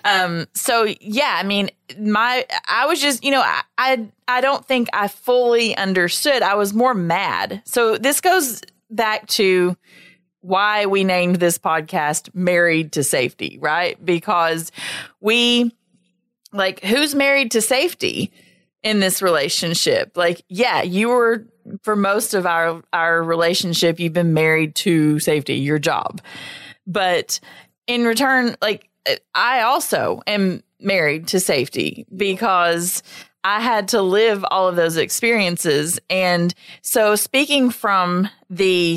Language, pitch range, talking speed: English, 175-235 Hz, 135 wpm